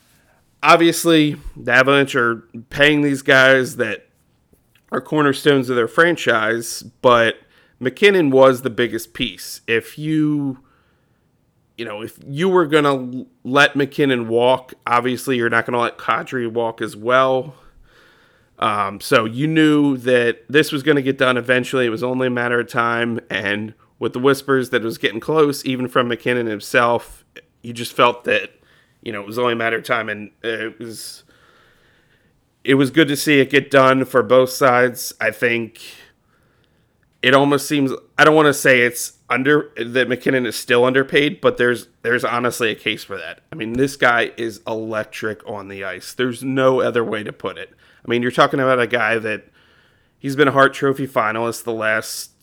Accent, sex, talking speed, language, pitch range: American, male, 175 wpm, English, 115-140 Hz